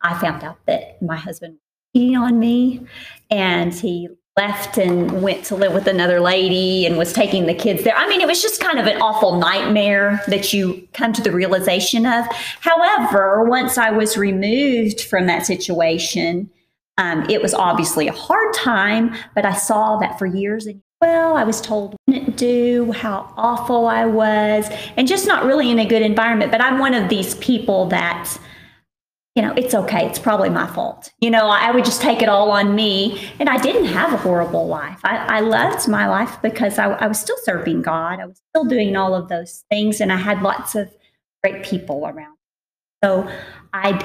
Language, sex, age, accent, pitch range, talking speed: English, female, 40-59, American, 185-235 Hz, 200 wpm